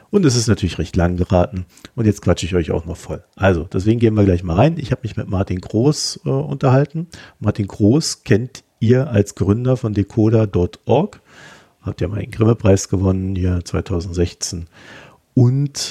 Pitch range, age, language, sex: 95-125 Hz, 50-69, German, male